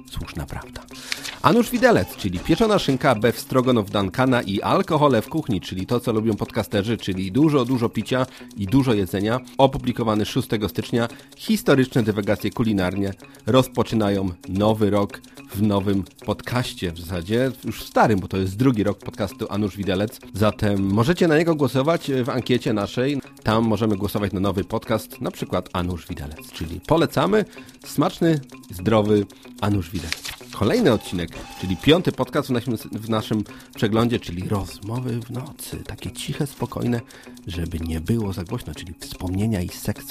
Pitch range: 95-130 Hz